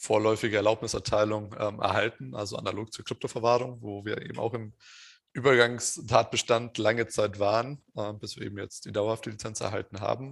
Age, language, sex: 20-39, English, male